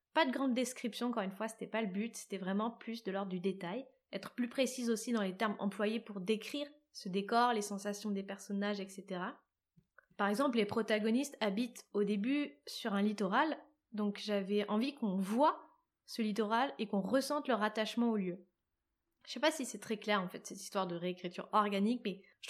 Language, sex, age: French, female, 20-39